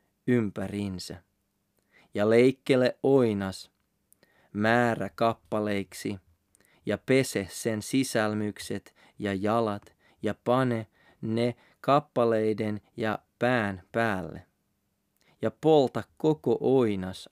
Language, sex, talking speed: Finnish, male, 80 wpm